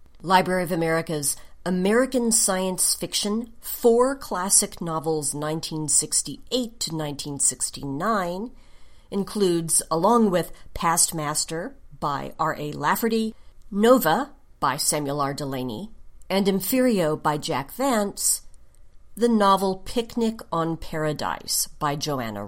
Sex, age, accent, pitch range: female, 50-69, American, 150-220 Hz